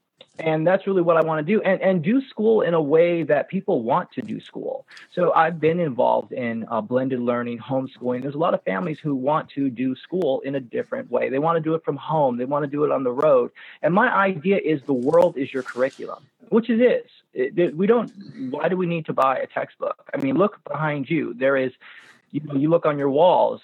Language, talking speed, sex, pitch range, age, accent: English, 240 wpm, male, 130-185 Hz, 30-49, American